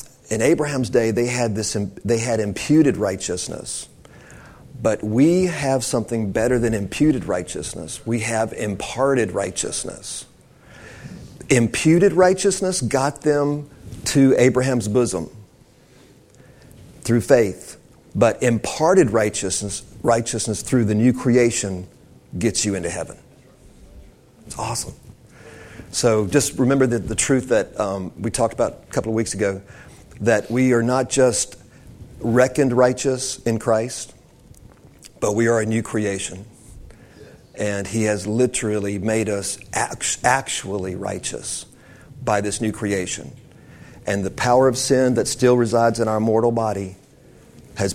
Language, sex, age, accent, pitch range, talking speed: English, male, 40-59, American, 105-125 Hz, 125 wpm